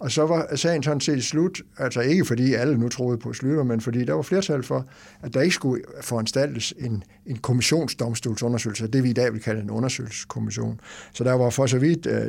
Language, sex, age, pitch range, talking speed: English, male, 60-79, 110-135 Hz, 215 wpm